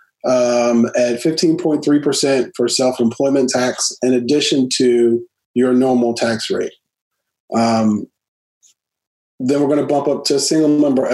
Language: English